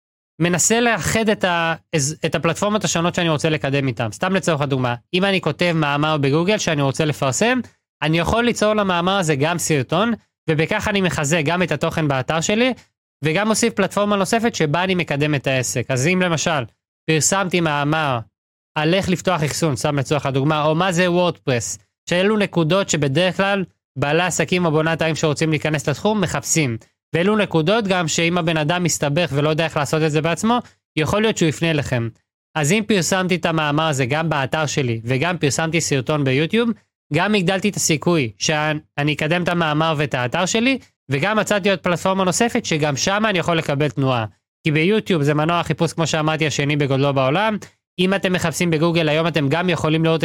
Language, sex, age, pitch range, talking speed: Hebrew, male, 20-39, 150-185 Hz, 175 wpm